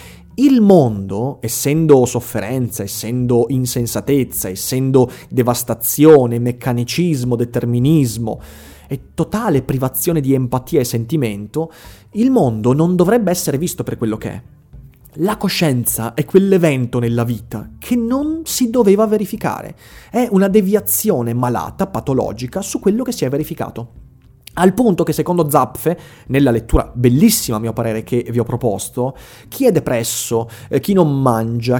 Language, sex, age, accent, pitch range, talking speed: Italian, male, 30-49, native, 120-180 Hz, 130 wpm